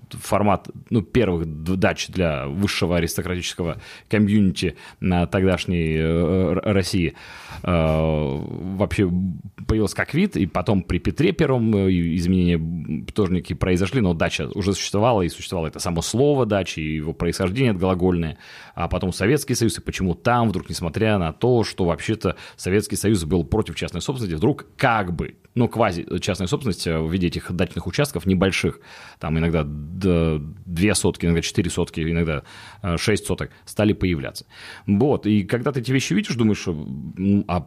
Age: 30-49